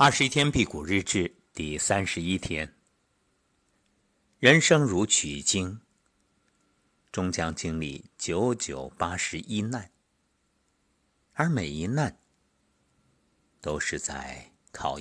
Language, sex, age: Chinese, male, 50-69